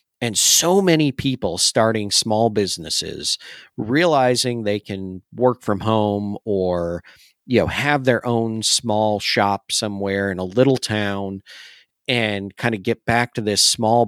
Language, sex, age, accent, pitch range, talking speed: English, male, 40-59, American, 100-130 Hz, 145 wpm